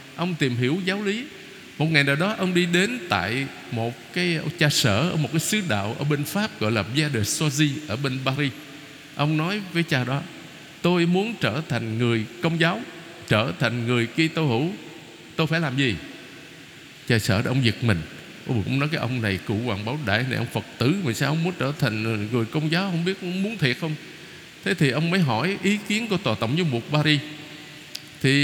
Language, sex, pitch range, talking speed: Vietnamese, male, 130-180 Hz, 215 wpm